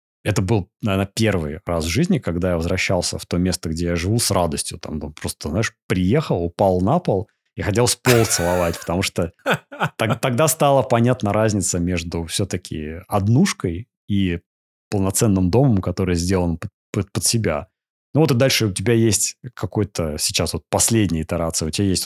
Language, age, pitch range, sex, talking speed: Russian, 30-49, 85-115 Hz, male, 175 wpm